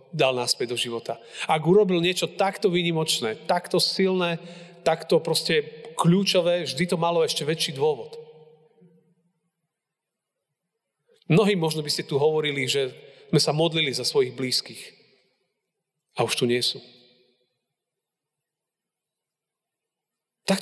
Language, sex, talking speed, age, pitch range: Slovak, male, 115 wpm, 40-59, 135-175 Hz